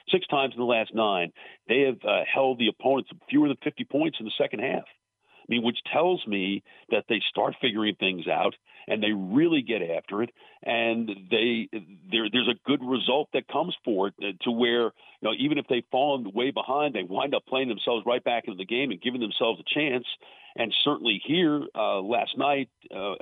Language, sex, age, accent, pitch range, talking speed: English, male, 50-69, American, 110-145 Hz, 205 wpm